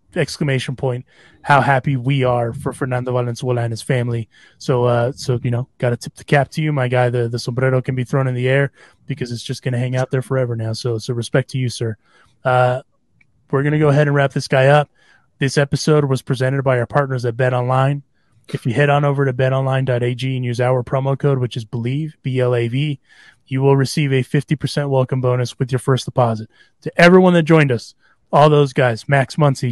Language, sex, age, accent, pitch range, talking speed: English, male, 20-39, American, 125-145 Hz, 220 wpm